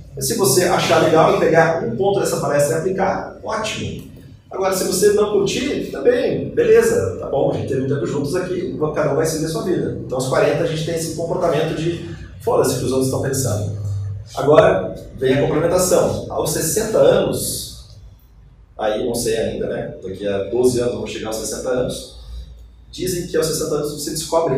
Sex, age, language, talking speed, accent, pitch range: male, 30-49, Portuguese, 195 wpm, Brazilian, 120-170 Hz